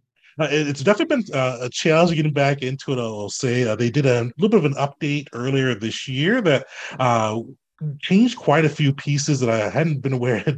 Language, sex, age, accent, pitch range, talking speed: English, male, 30-49, American, 115-145 Hz, 210 wpm